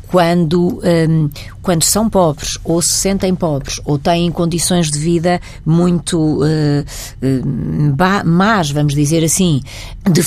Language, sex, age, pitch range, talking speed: Portuguese, female, 40-59, 150-180 Hz, 125 wpm